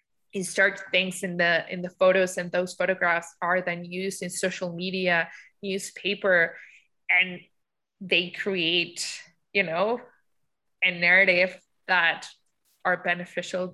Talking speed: 120 wpm